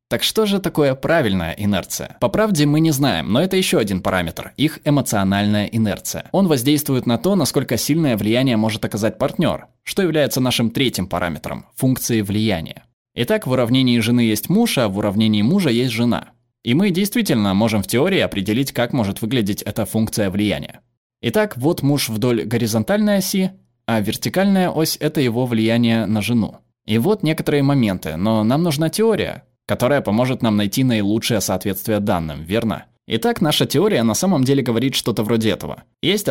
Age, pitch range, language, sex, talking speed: 20-39, 110-150 Hz, Russian, male, 170 wpm